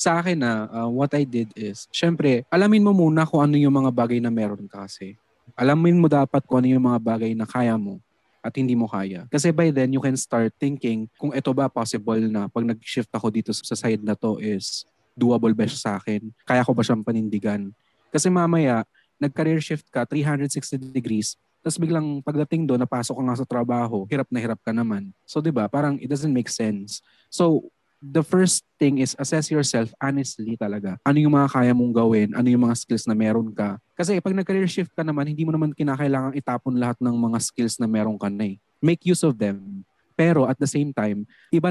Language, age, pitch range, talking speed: English, 20-39, 110-145 Hz, 210 wpm